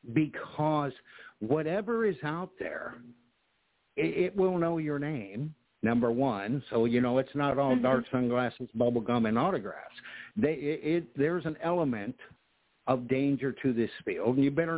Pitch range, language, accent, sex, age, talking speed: 125-155 Hz, English, American, male, 60-79, 160 wpm